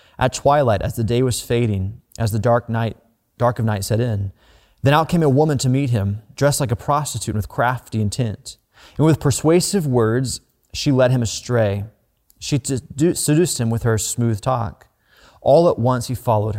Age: 30-49